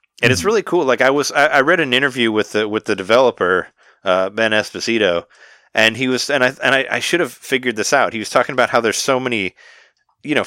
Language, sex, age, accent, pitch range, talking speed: English, male, 30-49, American, 105-130 Hz, 245 wpm